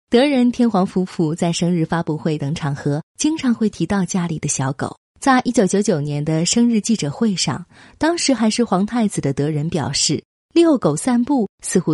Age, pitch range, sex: 30-49, 150-235 Hz, female